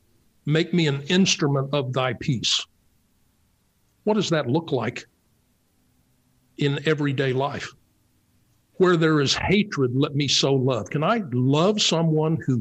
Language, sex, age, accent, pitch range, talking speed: English, male, 60-79, American, 115-155 Hz, 135 wpm